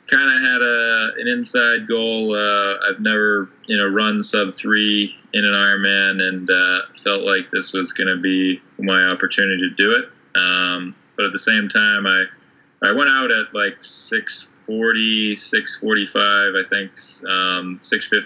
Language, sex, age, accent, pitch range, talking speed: English, male, 20-39, American, 90-100 Hz, 150 wpm